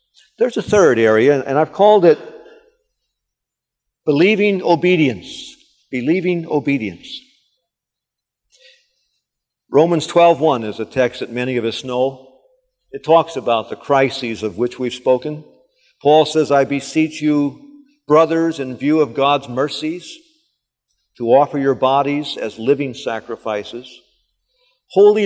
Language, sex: English, male